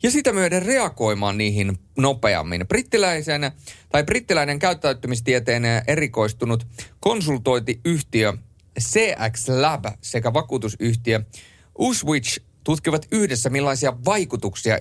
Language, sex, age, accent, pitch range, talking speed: Finnish, male, 30-49, native, 105-140 Hz, 85 wpm